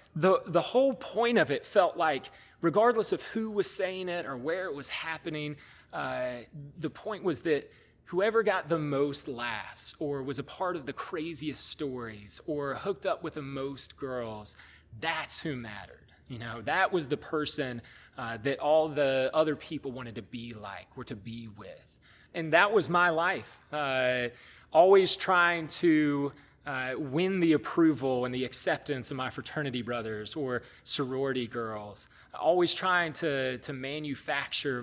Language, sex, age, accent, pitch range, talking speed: English, male, 20-39, American, 125-170 Hz, 165 wpm